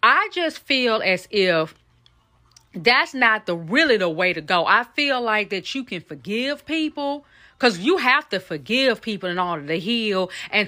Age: 30-49